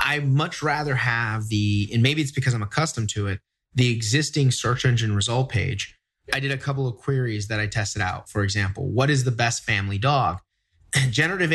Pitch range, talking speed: 110-150 Hz, 195 wpm